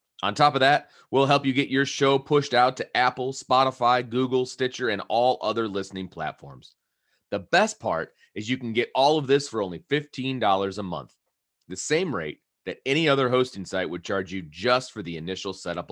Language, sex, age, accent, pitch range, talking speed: English, male, 30-49, American, 100-135 Hz, 200 wpm